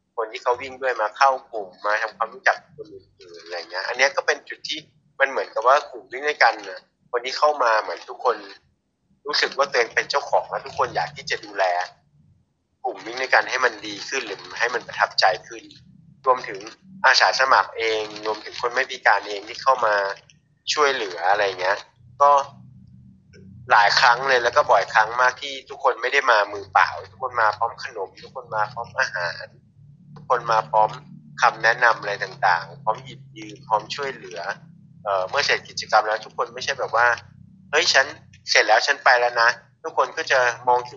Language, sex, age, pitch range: Thai, male, 30-49, 110-150 Hz